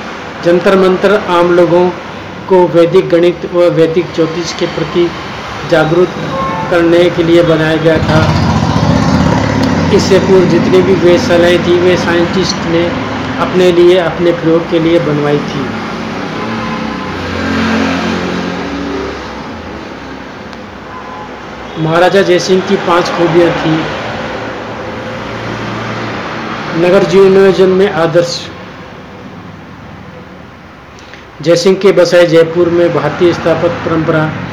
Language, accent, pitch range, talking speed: Hindi, native, 160-175 Hz, 95 wpm